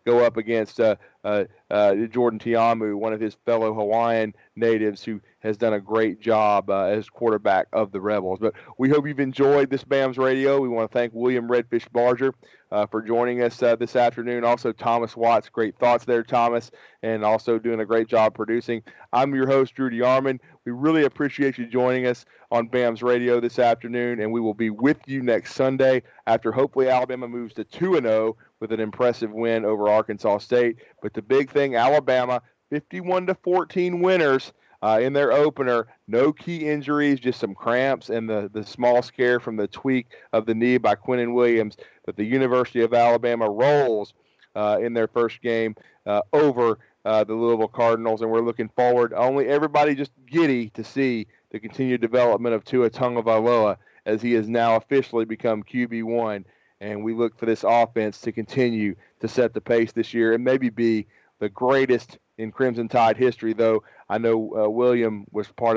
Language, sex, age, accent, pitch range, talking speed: English, male, 40-59, American, 110-125 Hz, 190 wpm